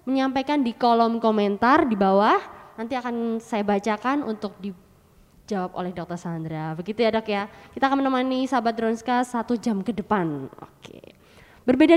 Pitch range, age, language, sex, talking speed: 220-290 Hz, 20-39, Indonesian, female, 150 wpm